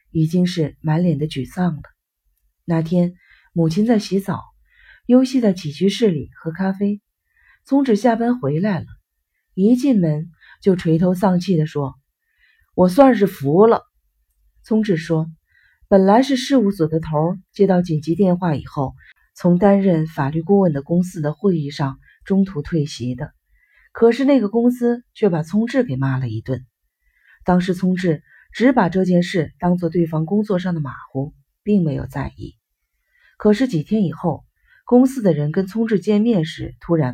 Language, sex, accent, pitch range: Chinese, female, native, 150-210 Hz